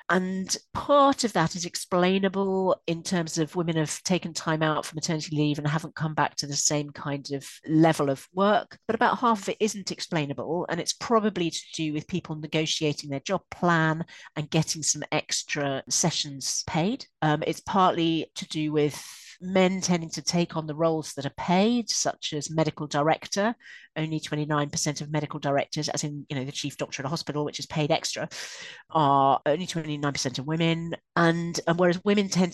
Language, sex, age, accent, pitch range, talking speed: English, female, 40-59, British, 150-180 Hz, 190 wpm